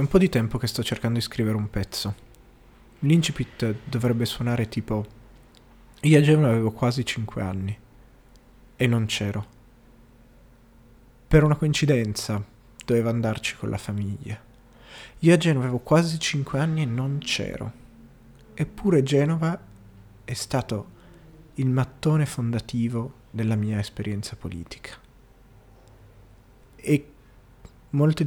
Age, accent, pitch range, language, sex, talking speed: 30-49, native, 110-130 Hz, Italian, male, 120 wpm